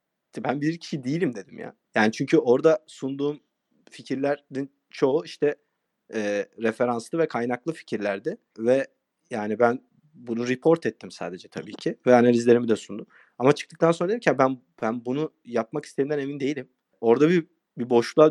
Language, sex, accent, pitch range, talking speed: Turkish, male, native, 110-155 Hz, 155 wpm